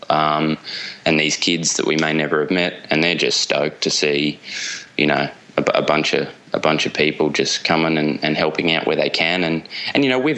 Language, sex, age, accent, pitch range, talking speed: English, male, 20-39, Australian, 75-85 Hz, 230 wpm